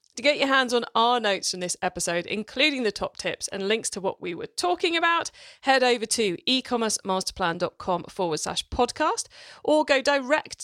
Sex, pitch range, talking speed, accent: female, 195-295 Hz, 180 wpm, British